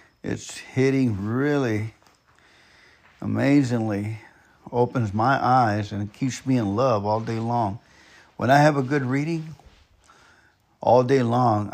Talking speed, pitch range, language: 125 wpm, 100-140 Hz, English